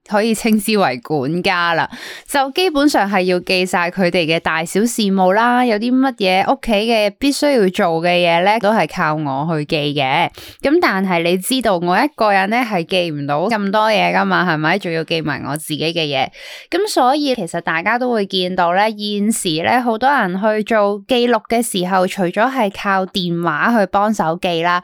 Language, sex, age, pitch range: Chinese, female, 20-39, 180-255 Hz